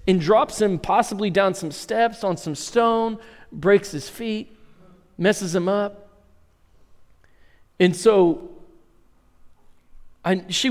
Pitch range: 175-225 Hz